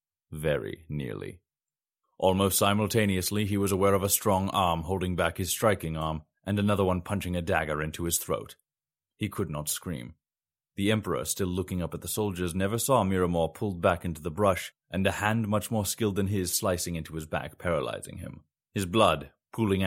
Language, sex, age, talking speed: English, male, 30-49, 185 wpm